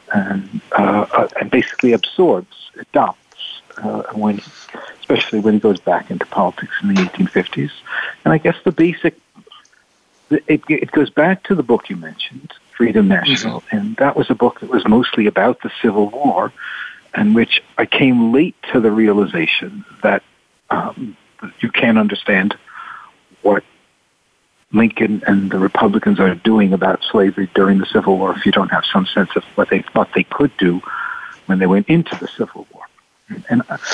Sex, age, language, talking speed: male, 50-69, English, 165 wpm